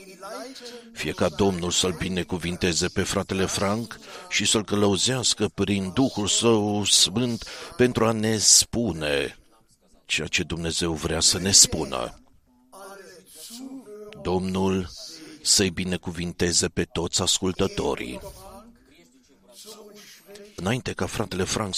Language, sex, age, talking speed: Romanian, male, 50-69, 100 wpm